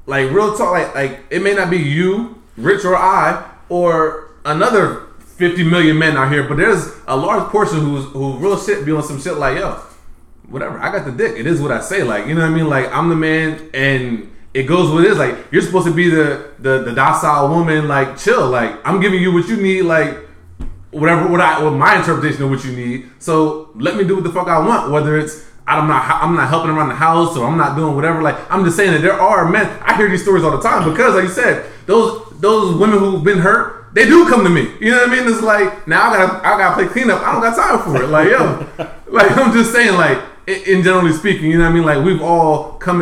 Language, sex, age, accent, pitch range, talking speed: English, male, 20-39, American, 140-185 Hz, 260 wpm